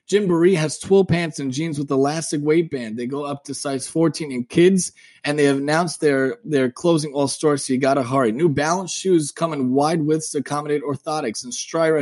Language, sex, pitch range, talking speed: English, male, 135-160 Hz, 215 wpm